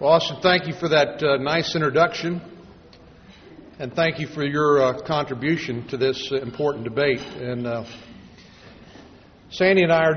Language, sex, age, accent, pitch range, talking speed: English, male, 50-69, American, 125-160 Hz, 160 wpm